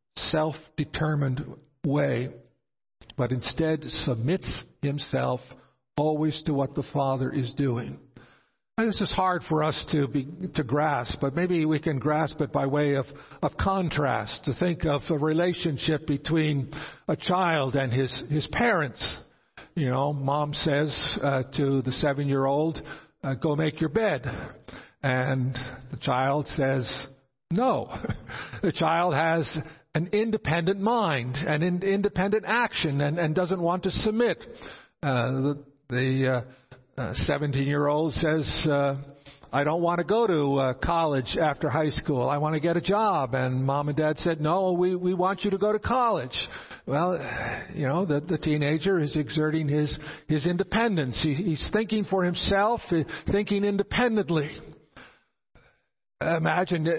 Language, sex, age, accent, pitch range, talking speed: English, male, 60-79, American, 140-170 Hz, 145 wpm